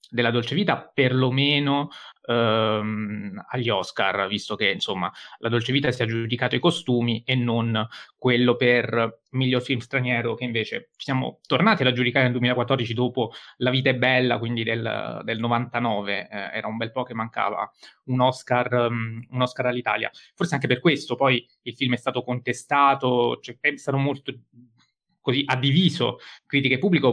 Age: 20-39